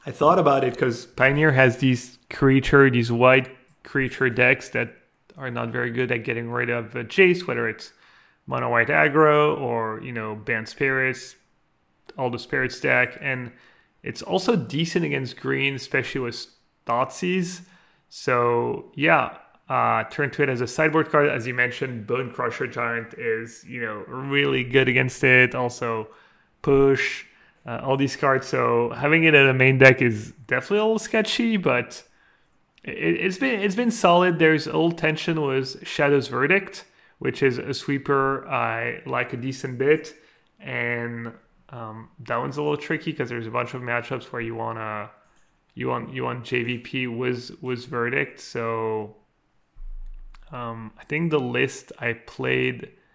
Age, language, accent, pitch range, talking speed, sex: 30-49, English, Canadian, 120-145 Hz, 160 wpm, male